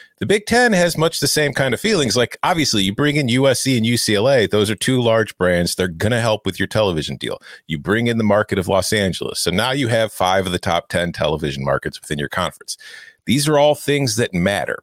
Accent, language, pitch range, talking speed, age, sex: American, English, 100-150 Hz, 240 wpm, 40-59, male